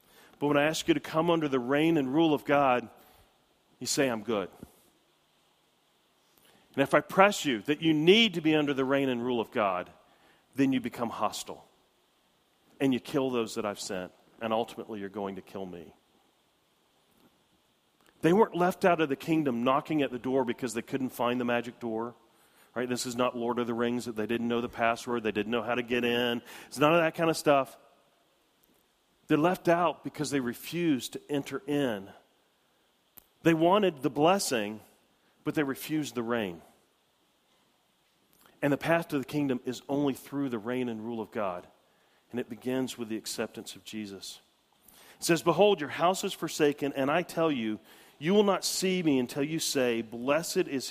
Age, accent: 40-59, American